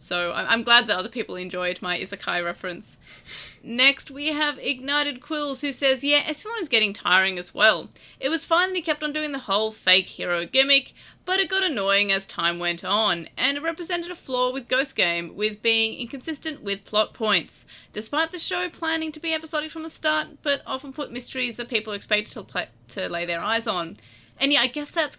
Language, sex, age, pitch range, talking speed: English, female, 30-49, 190-275 Hz, 210 wpm